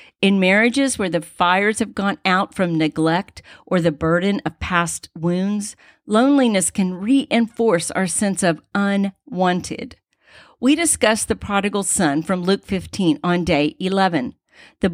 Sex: female